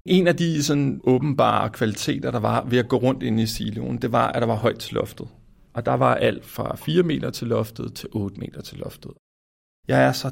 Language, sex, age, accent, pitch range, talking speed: Danish, male, 40-59, native, 105-125 Hz, 225 wpm